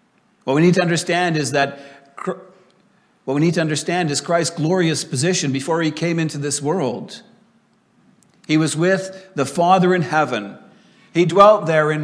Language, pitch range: English, 140-180 Hz